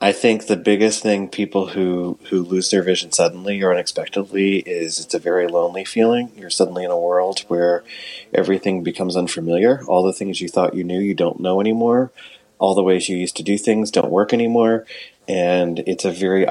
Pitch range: 90-110 Hz